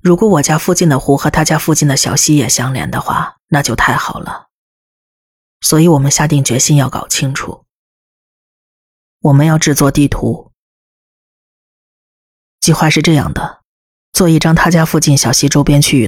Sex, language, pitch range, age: female, Chinese, 130-155 Hz, 30-49